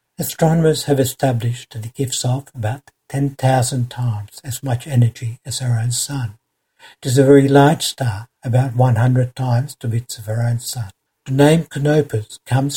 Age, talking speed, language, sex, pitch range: 60-79, 170 wpm, English, male, 120-135 Hz